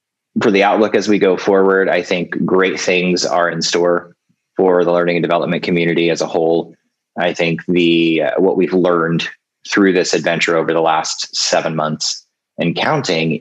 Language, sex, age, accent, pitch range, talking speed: English, male, 30-49, American, 85-95 Hz, 180 wpm